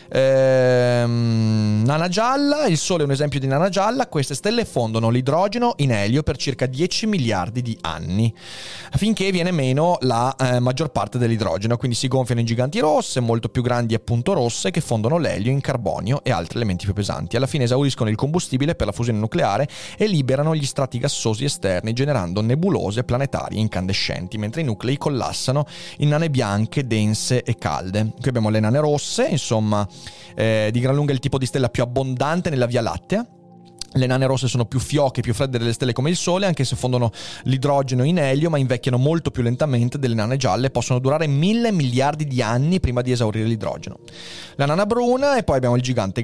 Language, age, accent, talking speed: Italian, 30-49, native, 190 wpm